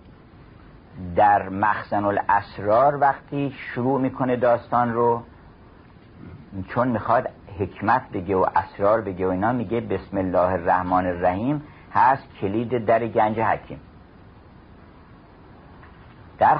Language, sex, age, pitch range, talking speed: Persian, male, 50-69, 100-125 Hz, 100 wpm